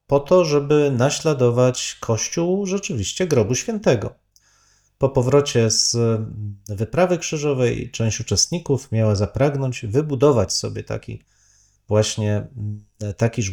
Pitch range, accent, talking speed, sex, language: 110-140 Hz, native, 100 wpm, male, Polish